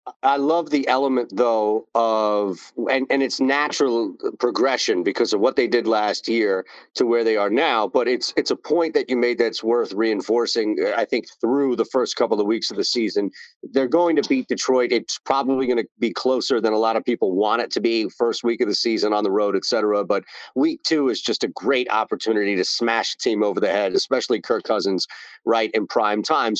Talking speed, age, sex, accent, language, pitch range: 220 wpm, 40-59, male, American, English, 115-165 Hz